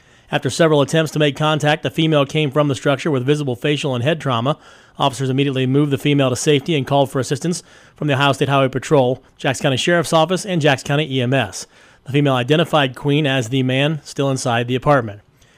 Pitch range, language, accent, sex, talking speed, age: 135-155 Hz, English, American, male, 210 wpm, 30-49